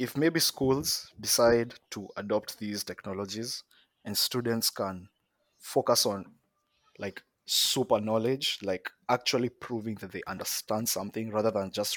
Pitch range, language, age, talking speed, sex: 100-125 Hz, English, 20-39, 130 wpm, male